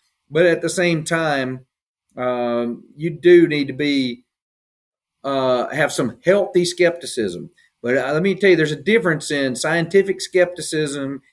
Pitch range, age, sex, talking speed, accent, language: 125-165 Hz, 40-59, male, 150 wpm, American, English